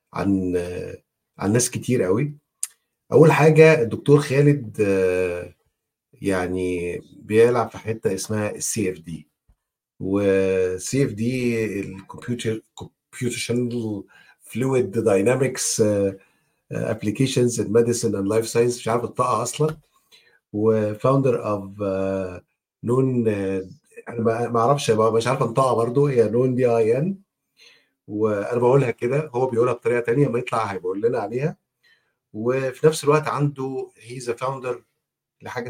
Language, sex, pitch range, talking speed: Arabic, male, 105-130 Hz, 105 wpm